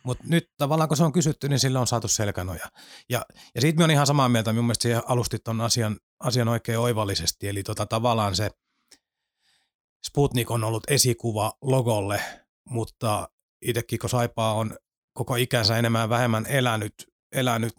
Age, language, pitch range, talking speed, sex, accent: 30-49, Finnish, 105-125 Hz, 165 wpm, male, native